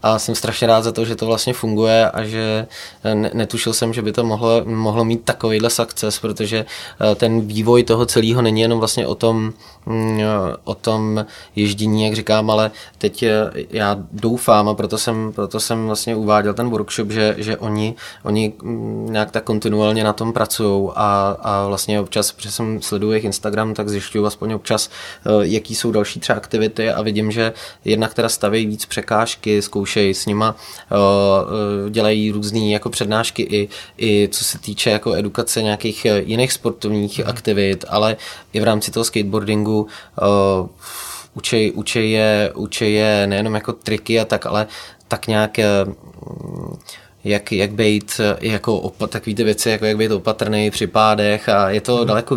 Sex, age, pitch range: male, 20-39, 105-115 Hz